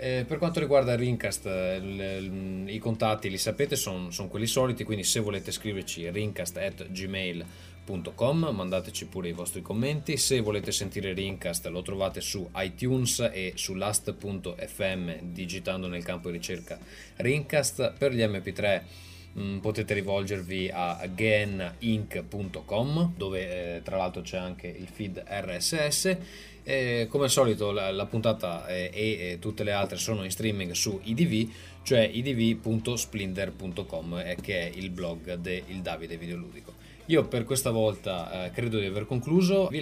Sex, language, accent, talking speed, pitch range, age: male, Italian, native, 140 wpm, 90-115 Hz, 20-39